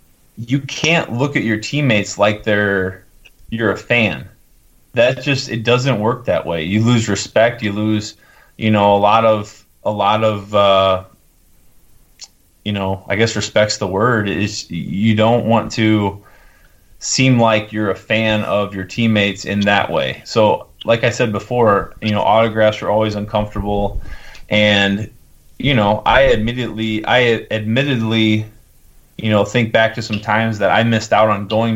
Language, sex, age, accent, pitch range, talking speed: English, male, 20-39, American, 100-110 Hz, 165 wpm